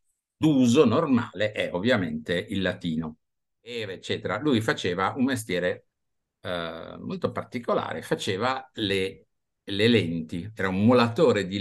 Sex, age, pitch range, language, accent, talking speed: male, 50-69, 85-115 Hz, Italian, native, 115 wpm